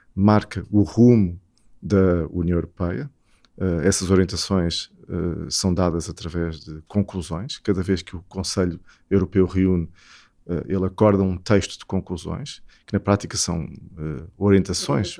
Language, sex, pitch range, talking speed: Portuguese, male, 85-100 Hz, 120 wpm